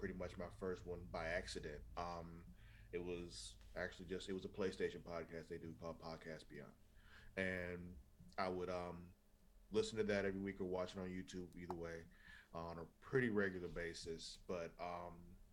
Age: 30-49